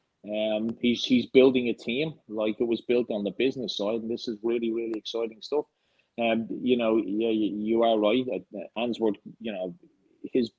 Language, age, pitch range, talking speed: English, 30-49, 105-125 Hz, 200 wpm